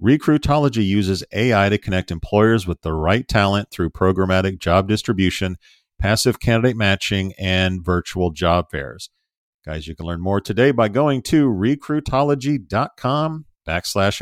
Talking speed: 135 wpm